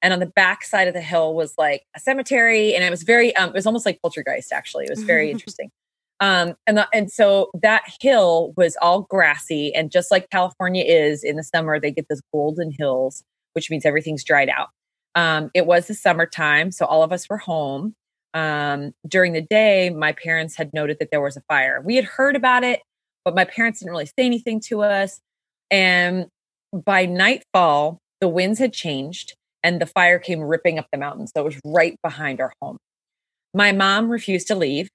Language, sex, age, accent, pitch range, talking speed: English, female, 30-49, American, 155-210 Hz, 205 wpm